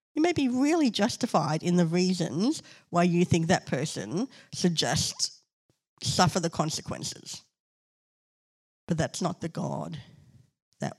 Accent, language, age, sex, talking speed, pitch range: Australian, English, 60-79, female, 125 wpm, 150-180 Hz